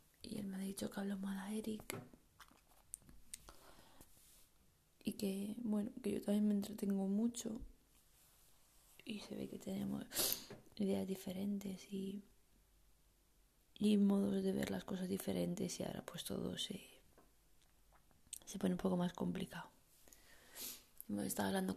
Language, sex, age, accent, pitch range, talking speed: Spanish, female, 20-39, Spanish, 175-200 Hz, 125 wpm